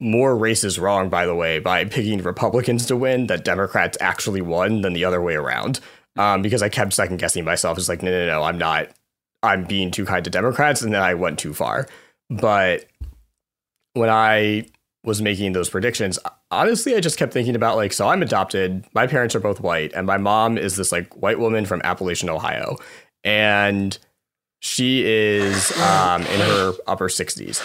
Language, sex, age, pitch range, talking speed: English, male, 20-39, 90-110 Hz, 190 wpm